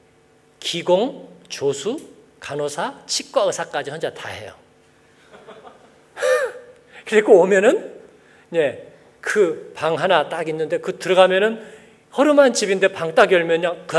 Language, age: Korean, 40-59